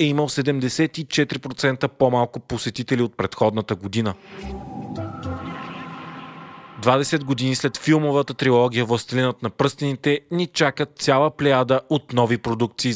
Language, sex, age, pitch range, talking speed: Bulgarian, male, 30-49, 120-140 Hz, 105 wpm